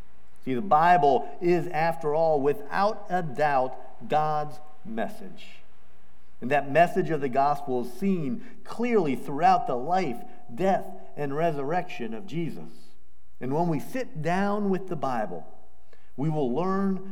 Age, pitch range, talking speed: 50-69, 125-190 Hz, 135 wpm